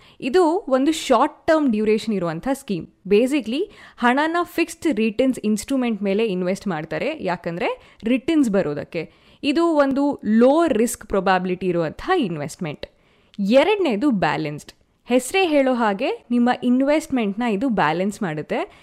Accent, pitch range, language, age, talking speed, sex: native, 200-295 Hz, Kannada, 20-39, 110 wpm, female